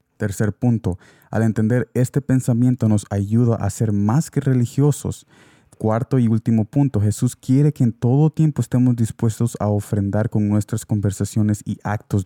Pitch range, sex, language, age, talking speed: 105-125 Hz, male, Spanish, 20-39, 155 wpm